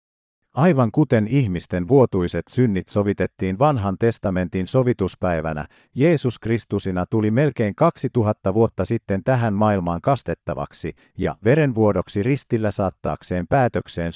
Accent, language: native, Finnish